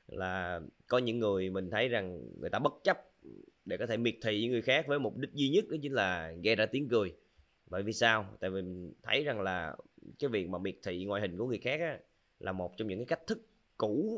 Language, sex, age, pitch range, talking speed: Vietnamese, male, 20-39, 95-130 Hz, 250 wpm